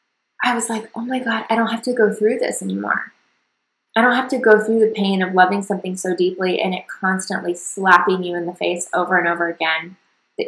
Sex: female